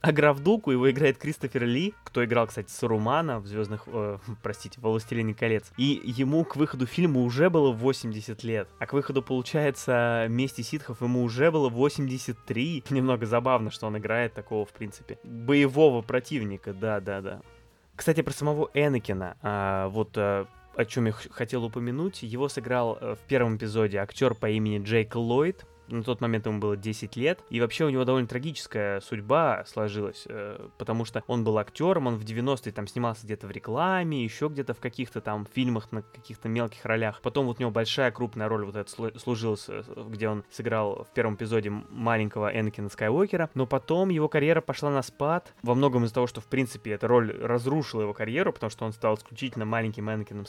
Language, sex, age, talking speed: Russian, male, 20-39, 180 wpm